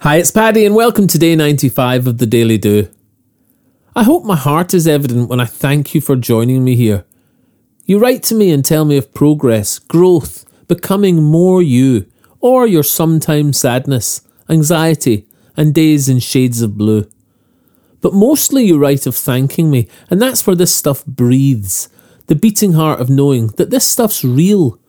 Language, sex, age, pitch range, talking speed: English, male, 40-59, 120-165 Hz, 175 wpm